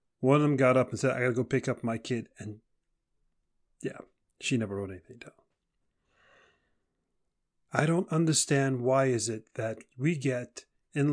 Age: 40-59